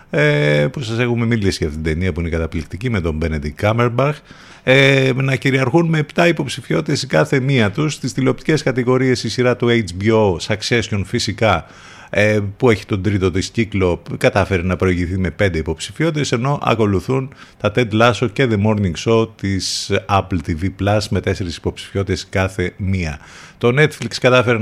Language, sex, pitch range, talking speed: Greek, male, 90-120 Hz, 160 wpm